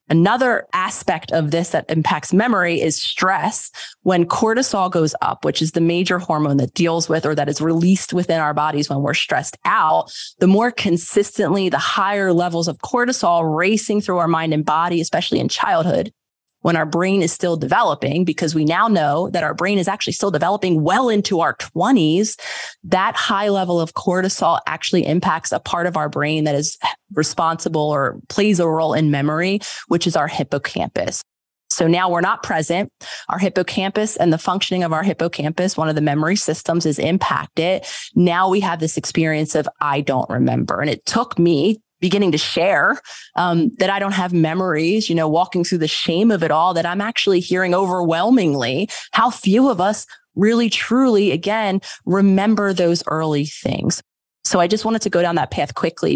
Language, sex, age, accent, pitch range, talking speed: English, female, 30-49, American, 160-200 Hz, 185 wpm